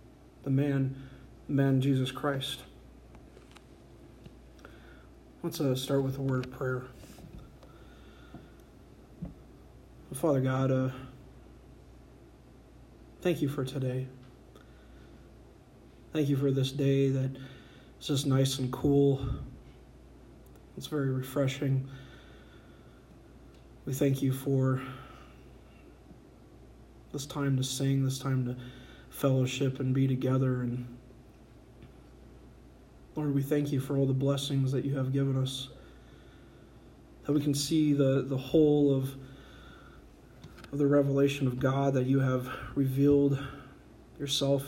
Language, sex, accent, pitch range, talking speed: English, male, American, 130-140 Hz, 110 wpm